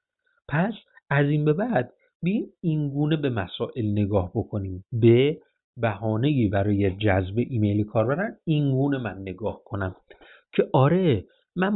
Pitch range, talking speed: 120-175 Hz, 120 wpm